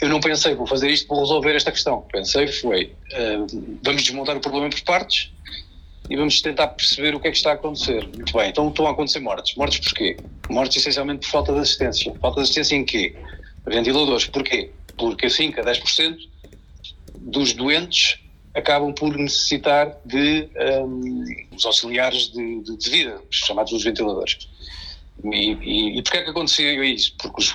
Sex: male